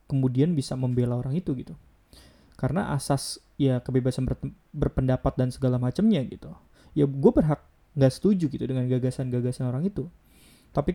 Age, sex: 20-39, male